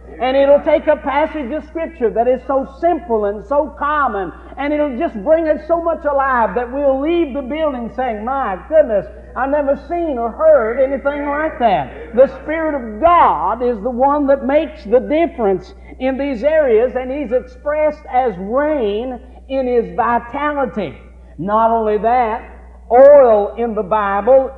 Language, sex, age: English, male, 50-69